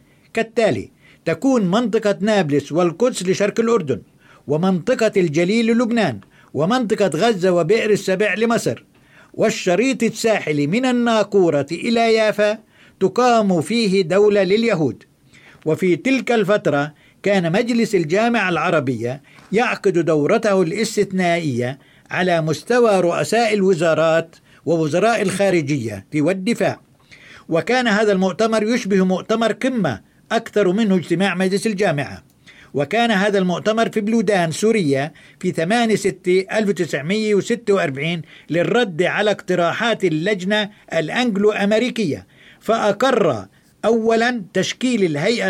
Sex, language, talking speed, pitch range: male, Arabic, 100 wpm, 165-220 Hz